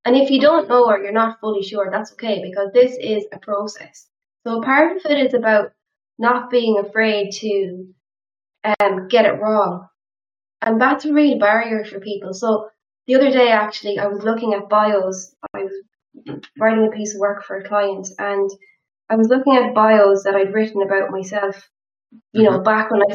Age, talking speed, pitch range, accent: 10-29, 190 wpm, 200-240 Hz, Irish